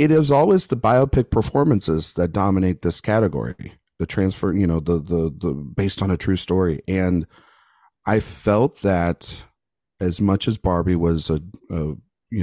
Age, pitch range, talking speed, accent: 40-59, 90-110 Hz, 165 wpm, American